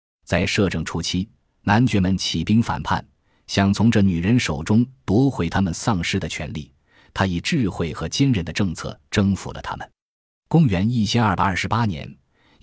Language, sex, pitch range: Chinese, male, 85-115 Hz